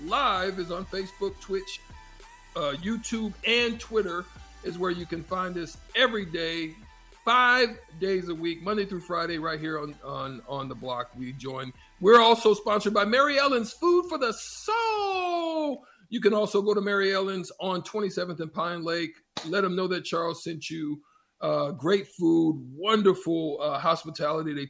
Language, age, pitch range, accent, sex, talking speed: English, 50-69, 160-215 Hz, American, male, 170 wpm